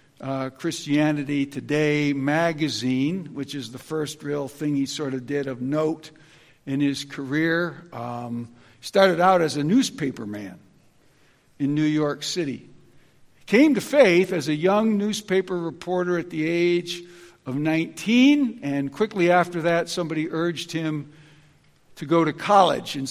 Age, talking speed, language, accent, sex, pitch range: 60-79, 145 wpm, English, American, male, 140-170 Hz